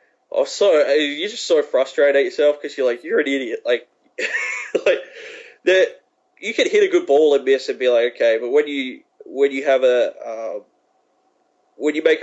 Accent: Australian